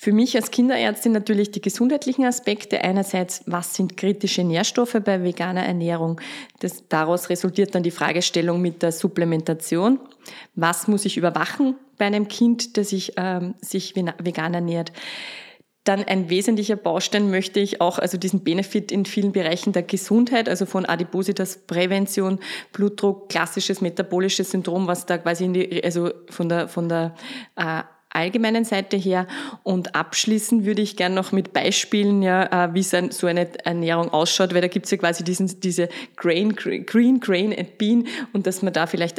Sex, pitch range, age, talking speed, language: female, 180-215 Hz, 30-49, 165 wpm, German